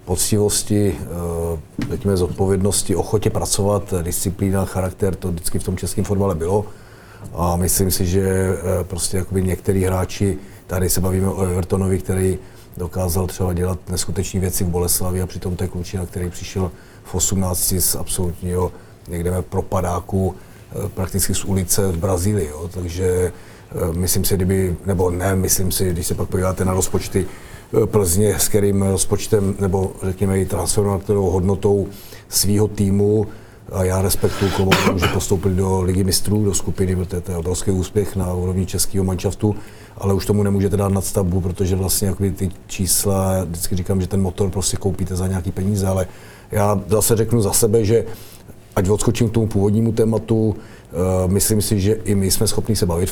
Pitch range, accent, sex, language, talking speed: 95-105 Hz, native, male, Czech, 155 wpm